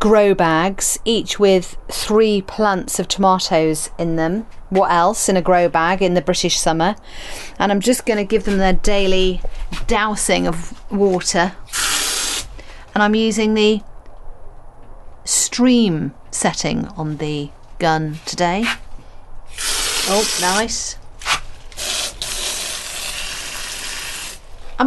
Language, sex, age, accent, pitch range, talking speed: English, female, 40-59, British, 170-215 Hz, 110 wpm